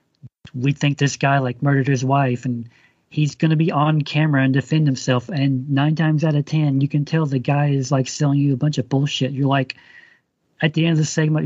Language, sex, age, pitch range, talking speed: English, male, 40-59, 135-155 Hz, 235 wpm